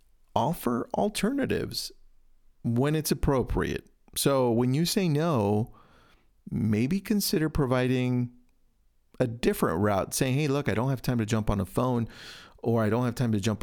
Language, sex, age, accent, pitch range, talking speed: English, male, 40-59, American, 105-145 Hz, 155 wpm